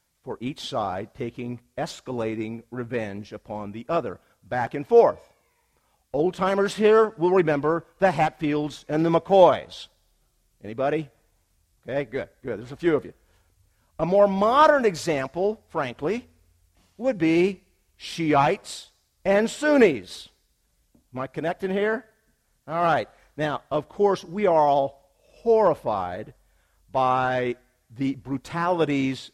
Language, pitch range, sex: English, 120-165 Hz, male